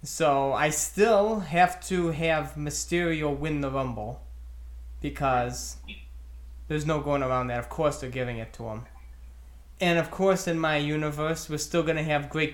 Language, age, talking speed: English, 20-39, 170 wpm